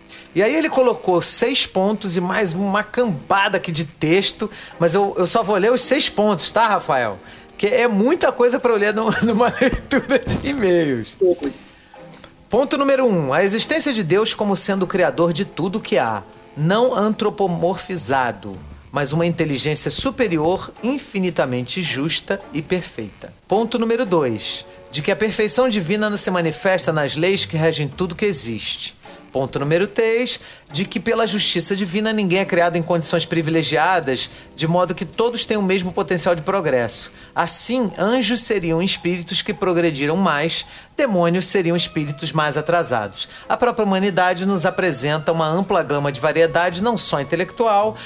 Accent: Brazilian